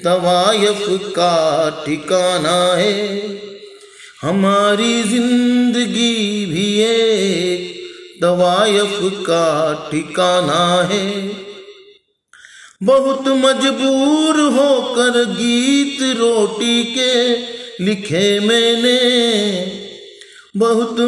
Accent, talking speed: native, 60 wpm